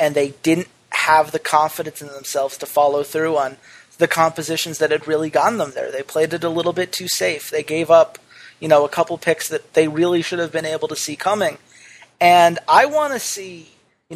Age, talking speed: 30-49, 220 wpm